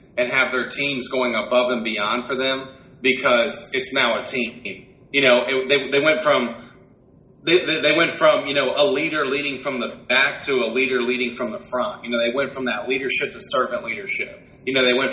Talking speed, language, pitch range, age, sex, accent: 200 wpm, English, 120-140 Hz, 30-49, male, American